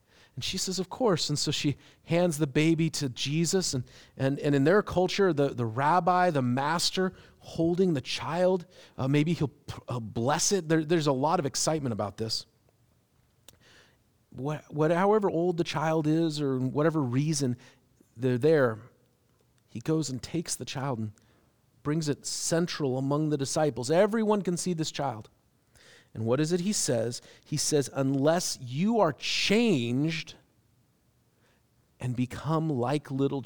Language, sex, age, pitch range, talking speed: English, male, 40-59, 130-180 Hz, 155 wpm